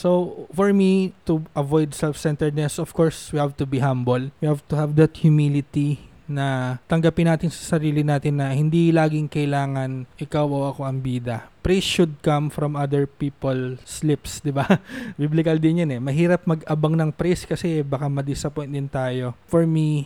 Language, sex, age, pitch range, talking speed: Filipino, male, 20-39, 140-165 Hz, 175 wpm